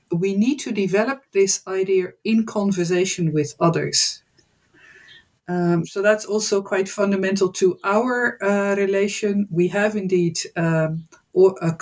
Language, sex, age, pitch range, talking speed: English, female, 50-69, 170-200 Hz, 120 wpm